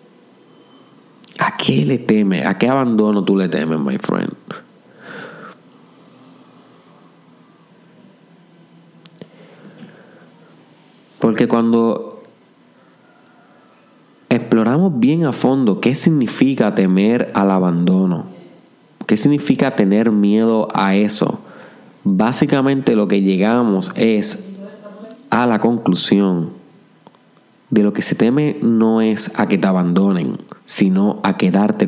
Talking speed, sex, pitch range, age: 95 wpm, male, 95-120 Hz, 30-49